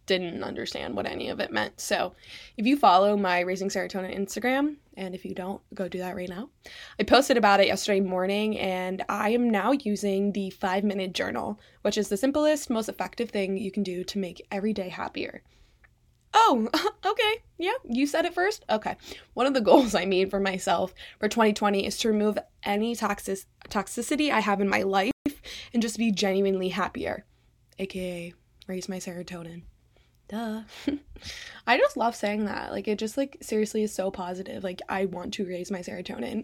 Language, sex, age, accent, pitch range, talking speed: English, female, 20-39, American, 190-240 Hz, 180 wpm